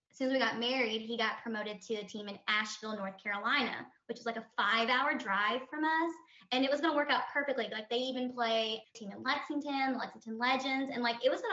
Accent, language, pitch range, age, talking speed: American, English, 220-255 Hz, 20-39, 245 wpm